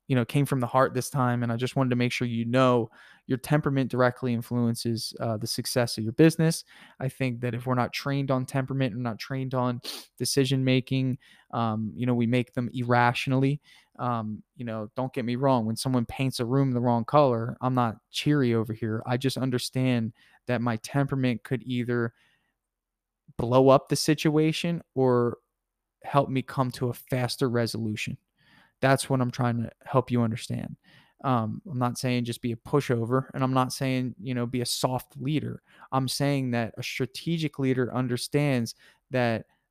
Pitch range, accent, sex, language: 120-135 Hz, American, male, English